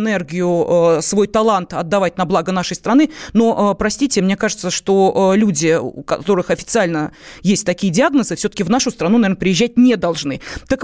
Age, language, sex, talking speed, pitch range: 30-49, Russian, female, 160 wpm, 190-265 Hz